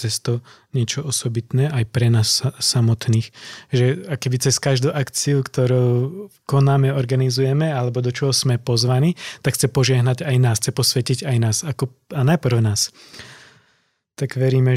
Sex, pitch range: male, 120-130 Hz